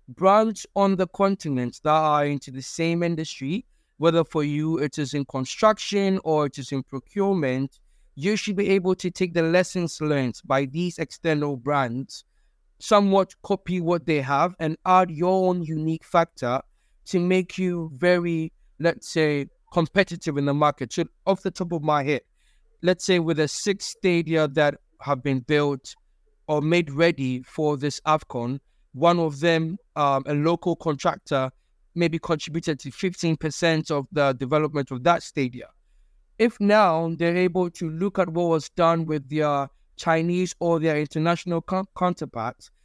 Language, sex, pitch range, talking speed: English, male, 150-180 Hz, 160 wpm